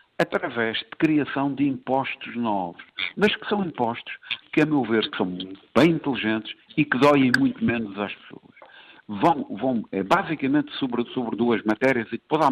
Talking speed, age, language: 170 wpm, 60-79, Portuguese